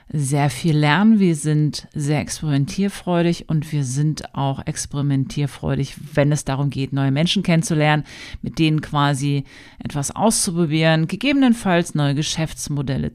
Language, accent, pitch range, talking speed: German, German, 140-180 Hz, 125 wpm